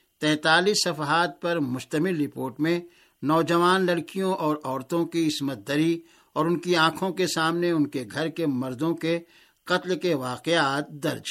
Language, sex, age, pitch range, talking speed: Urdu, male, 60-79, 150-175 Hz, 155 wpm